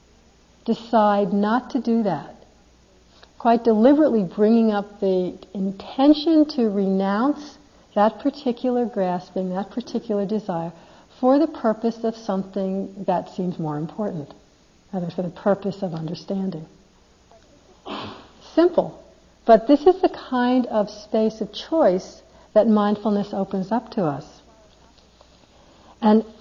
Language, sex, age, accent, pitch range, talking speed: English, female, 60-79, American, 180-230 Hz, 115 wpm